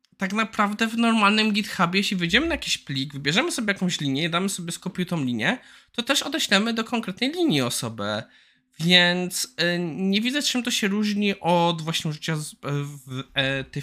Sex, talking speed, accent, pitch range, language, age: male, 155 wpm, native, 130-195 Hz, Polish, 20-39